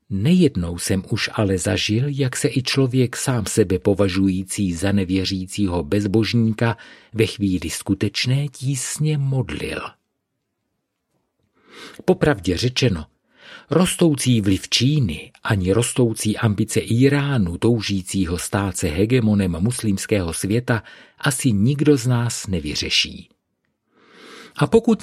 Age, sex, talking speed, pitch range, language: 50-69, male, 100 wpm, 95-135 Hz, Czech